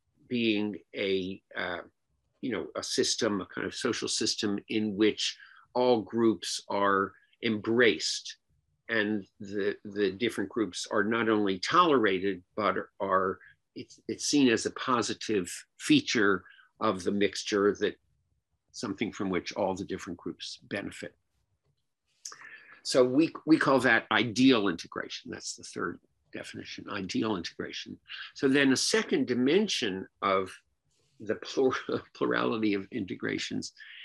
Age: 50-69